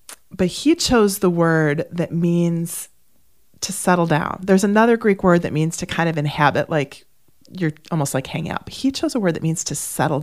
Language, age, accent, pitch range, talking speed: English, 30-49, American, 170-205 Hz, 205 wpm